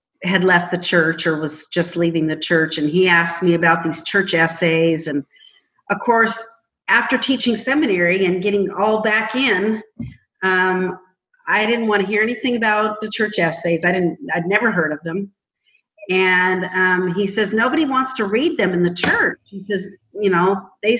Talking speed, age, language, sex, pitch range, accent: 185 wpm, 50-69, English, female, 175-220 Hz, American